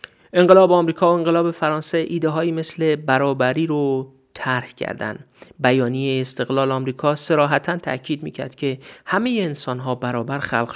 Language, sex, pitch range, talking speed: Persian, male, 125-160 Hz, 130 wpm